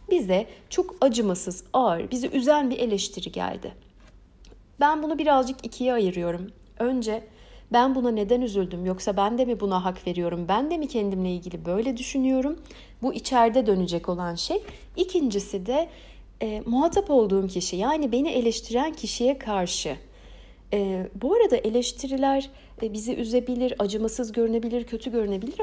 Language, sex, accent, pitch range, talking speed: Turkish, female, native, 205-290 Hz, 140 wpm